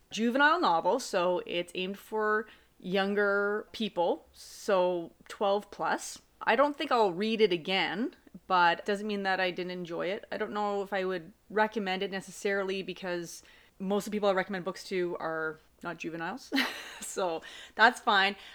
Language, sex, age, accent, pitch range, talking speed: English, female, 30-49, American, 185-220 Hz, 165 wpm